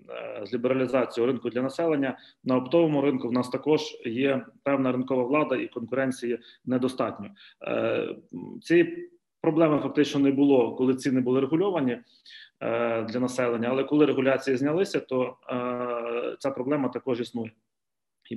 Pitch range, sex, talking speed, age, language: 125-145 Hz, male, 125 wpm, 30-49, Ukrainian